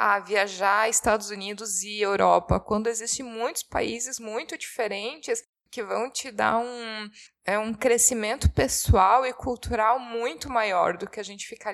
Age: 20-39